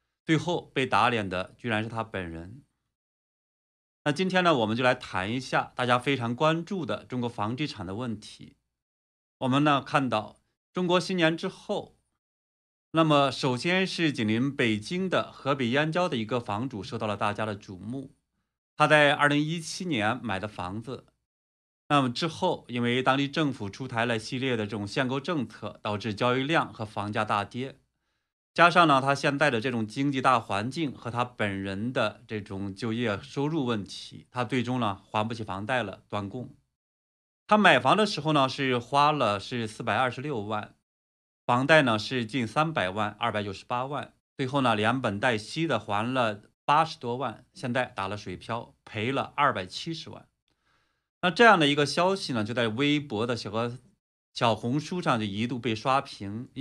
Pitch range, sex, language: 110-145 Hz, male, Chinese